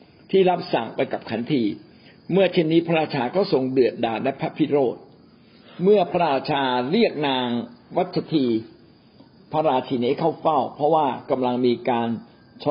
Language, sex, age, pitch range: Thai, male, 60-79, 130-185 Hz